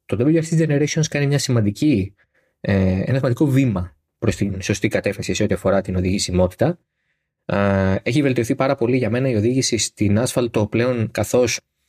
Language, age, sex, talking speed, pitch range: Greek, 20-39, male, 150 wpm, 100-125 Hz